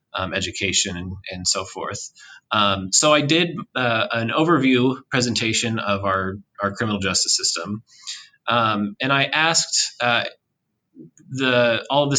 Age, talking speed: 30-49, 145 wpm